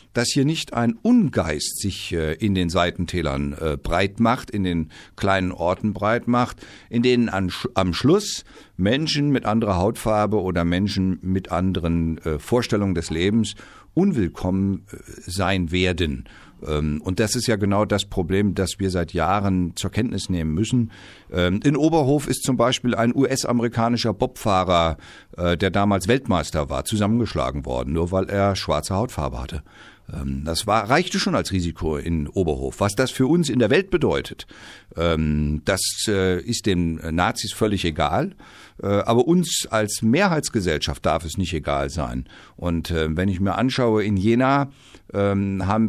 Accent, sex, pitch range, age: German, male, 85-120 Hz, 50-69